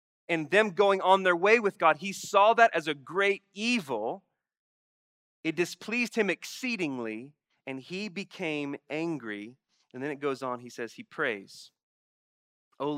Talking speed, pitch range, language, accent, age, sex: 155 wpm, 145-200 Hz, English, American, 30-49, male